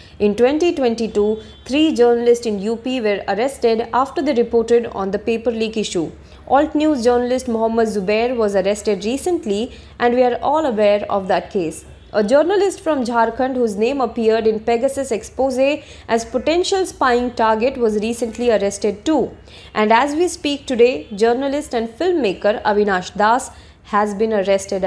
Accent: Indian